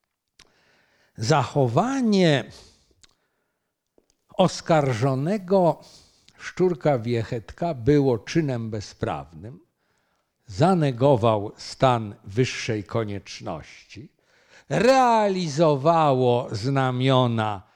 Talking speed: 45 wpm